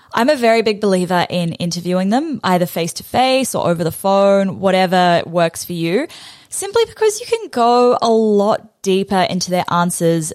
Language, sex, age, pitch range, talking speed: English, female, 20-39, 170-220 Hz, 170 wpm